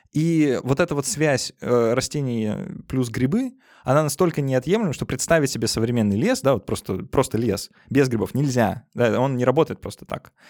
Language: Russian